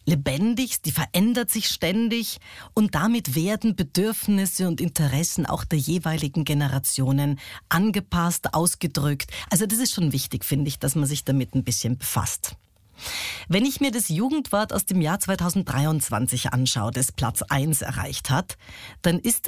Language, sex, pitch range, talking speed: German, female, 140-200 Hz, 150 wpm